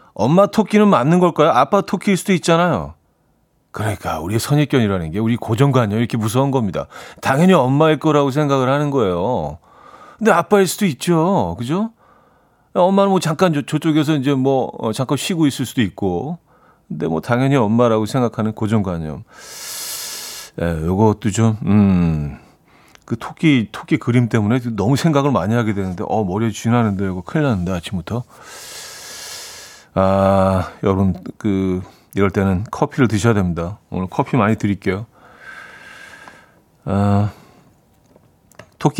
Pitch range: 105-155 Hz